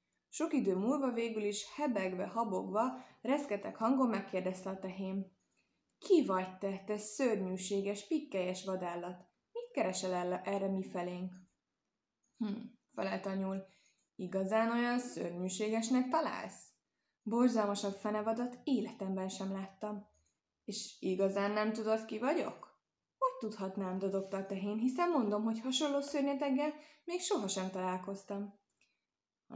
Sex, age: female, 20-39